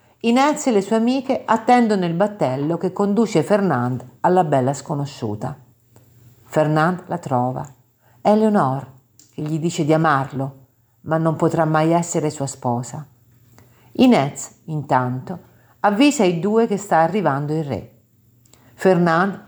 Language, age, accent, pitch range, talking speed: Italian, 50-69, native, 130-185 Hz, 125 wpm